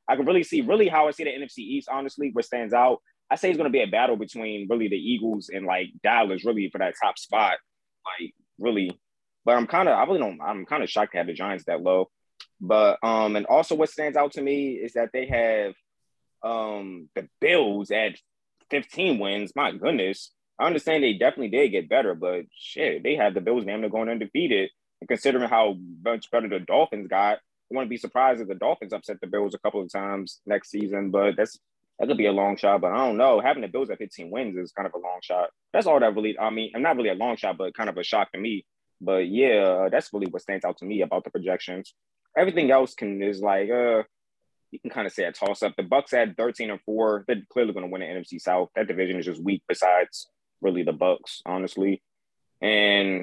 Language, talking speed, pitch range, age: English, 235 wpm, 95-125 Hz, 20-39